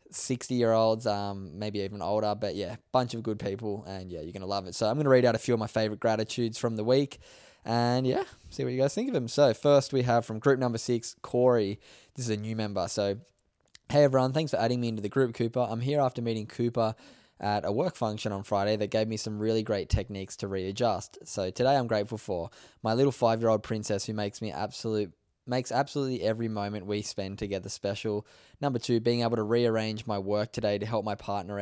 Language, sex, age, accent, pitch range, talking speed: English, male, 10-29, Australian, 105-120 Hz, 230 wpm